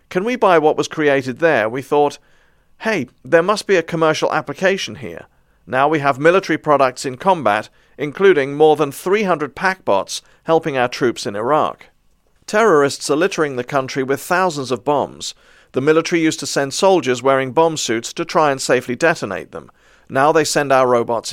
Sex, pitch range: male, 135-165 Hz